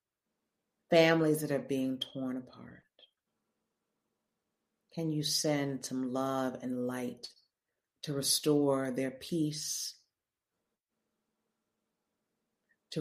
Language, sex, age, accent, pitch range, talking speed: English, female, 40-59, American, 130-155 Hz, 85 wpm